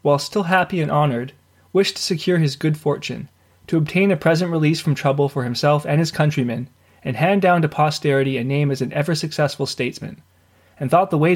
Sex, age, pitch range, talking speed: male, 20-39, 130-165 Hz, 200 wpm